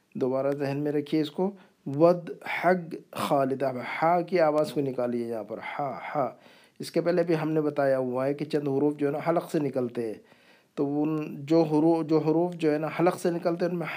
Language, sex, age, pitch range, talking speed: Urdu, male, 50-69, 135-165 Hz, 220 wpm